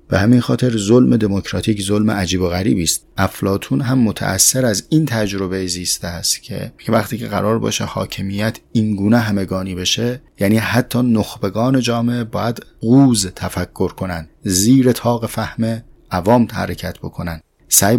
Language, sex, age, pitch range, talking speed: Persian, male, 30-49, 95-115 Hz, 145 wpm